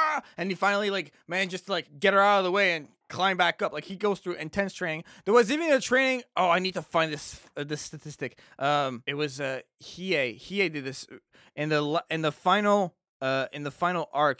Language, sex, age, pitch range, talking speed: English, male, 20-39, 145-190 Hz, 235 wpm